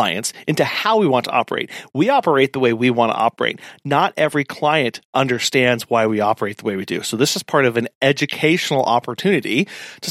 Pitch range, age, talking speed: 125-175 Hz, 40-59, 215 wpm